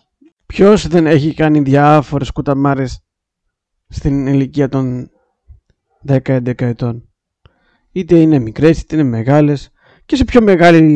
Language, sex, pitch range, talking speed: Greek, male, 120-155 Hz, 115 wpm